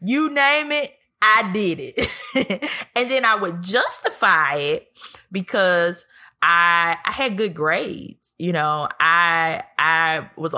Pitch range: 170-230 Hz